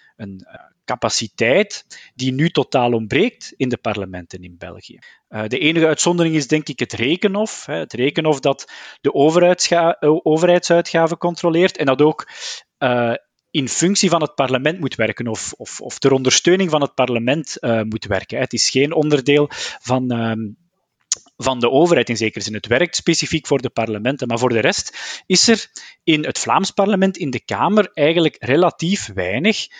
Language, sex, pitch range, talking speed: Dutch, male, 125-165 Hz, 155 wpm